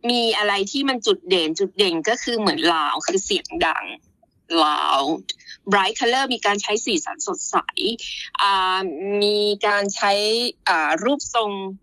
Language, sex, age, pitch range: Thai, female, 20-39, 195-280 Hz